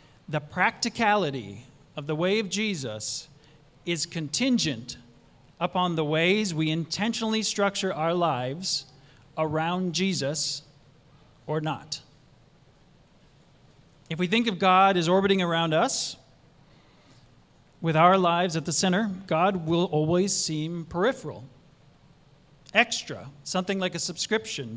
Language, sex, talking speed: English, male, 110 wpm